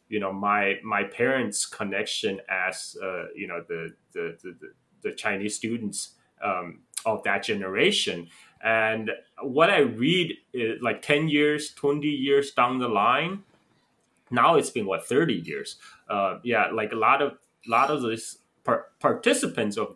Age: 20-39